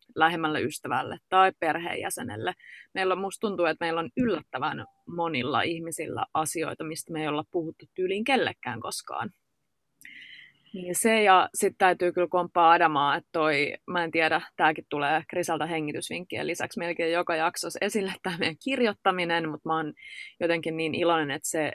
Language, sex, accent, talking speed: Finnish, female, native, 150 wpm